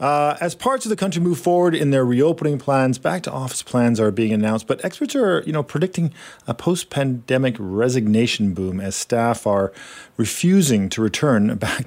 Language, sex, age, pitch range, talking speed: English, male, 40-59, 110-150 Hz, 170 wpm